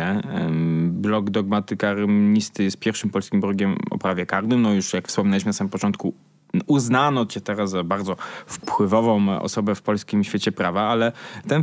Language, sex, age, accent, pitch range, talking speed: Polish, male, 20-39, native, 100-120 Hz, 150 wpm